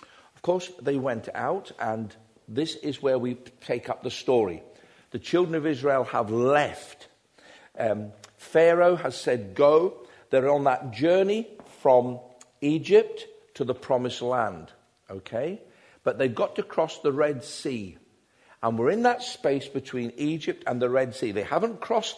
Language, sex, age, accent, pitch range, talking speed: English, male, 50-69, British, 115-165 Hz, 170 wpm